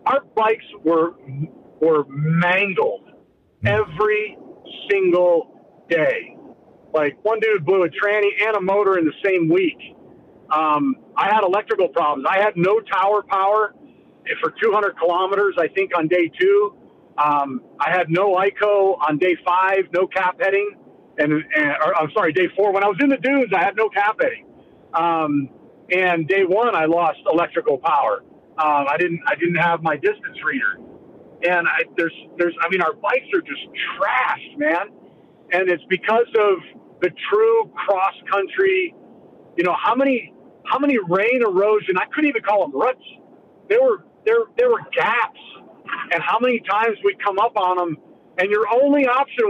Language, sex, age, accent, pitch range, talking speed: English, male, 50-69, American, 175-285 Hz, 165 wpm